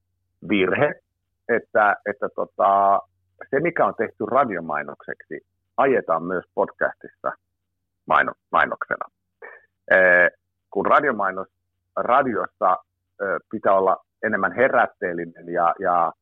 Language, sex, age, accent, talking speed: Finnish, male, 50-69, native, 90 wpm